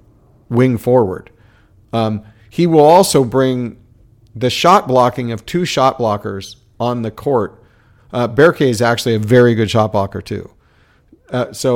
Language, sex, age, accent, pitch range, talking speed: English, male, 40-59, American, 115-140 Hz, 150 wpm